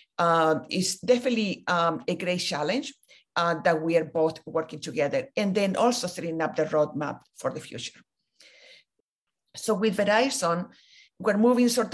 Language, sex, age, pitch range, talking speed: English, female, 50-69, 165-205 Hz, 150 wpm